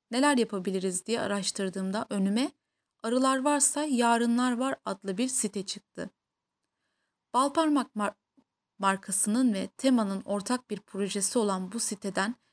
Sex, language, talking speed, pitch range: female, Turkish, 115 wpm, 195-250 Hz